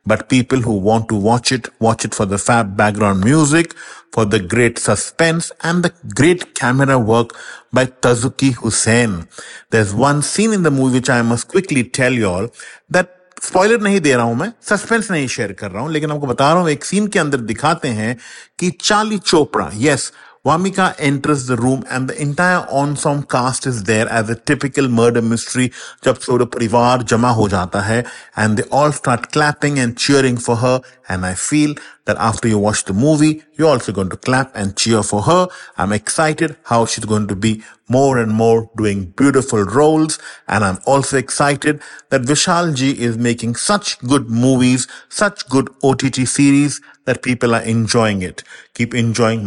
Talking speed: 170 wpm